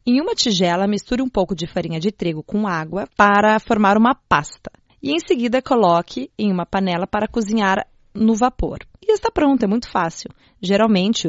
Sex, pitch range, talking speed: female, 185-235 Hz, 180 wpm